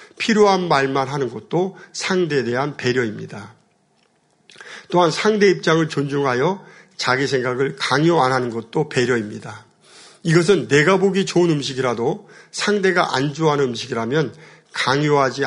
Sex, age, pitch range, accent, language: male, 50-69, 130-180 Hz, native, Korean